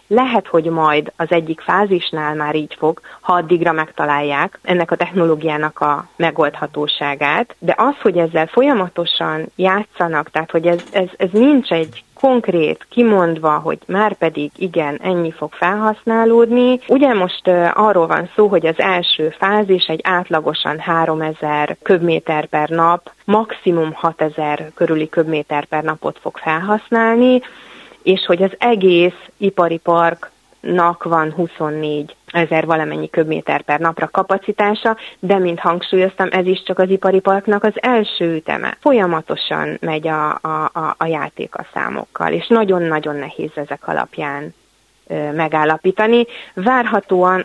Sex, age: female, 30-49